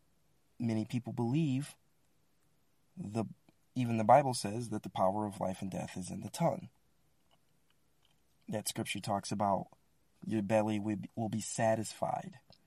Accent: American